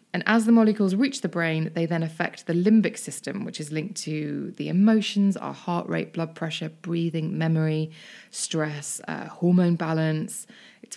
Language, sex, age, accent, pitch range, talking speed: English, female, 20-39, British, 160-205 Hz, 170 wpm